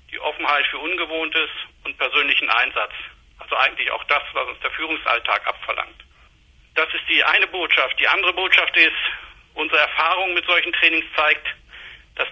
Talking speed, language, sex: 155 wpm, German, male